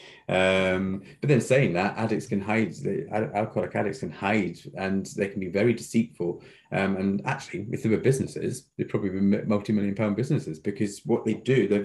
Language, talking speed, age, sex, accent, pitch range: English, 185 wpm, 30-49, male, British, 105-130 Hz